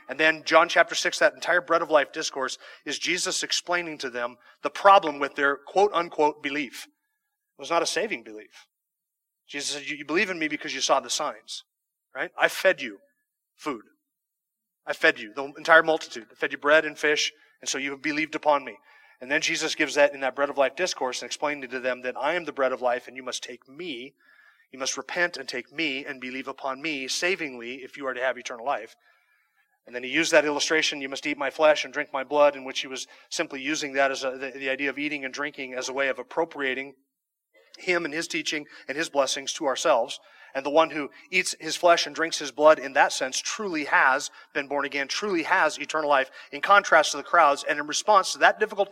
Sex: male